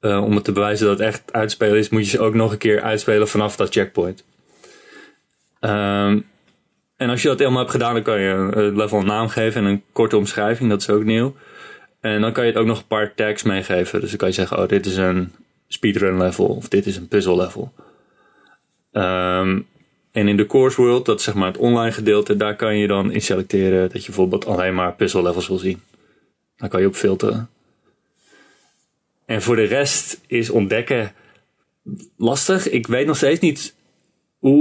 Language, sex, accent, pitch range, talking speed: Dutch, male, Dutch, 100-110 Hz, 205 wpm